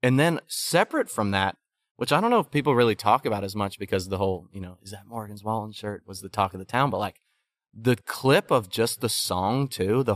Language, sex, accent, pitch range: English, male, American, 95-115 Hz